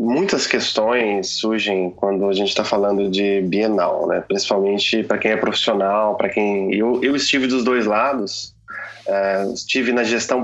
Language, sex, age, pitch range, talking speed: Portuguese, male, 20-39, 100-135 Hz, 155 wpm